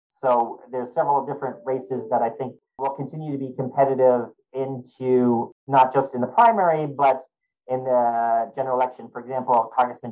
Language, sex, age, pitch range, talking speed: English, male, 40-59, 120-135 Hz, 160 wpm